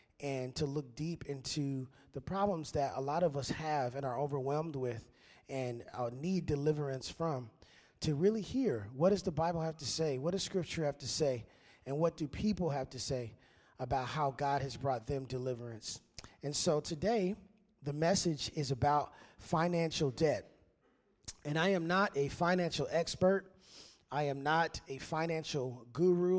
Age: 30-49